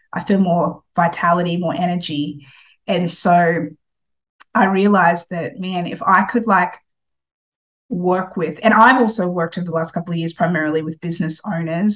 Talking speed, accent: 160 wpm, Australian